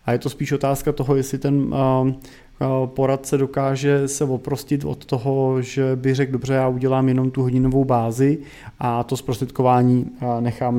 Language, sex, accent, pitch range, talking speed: Czech, male, native, 125-140 Hz, 155 wpm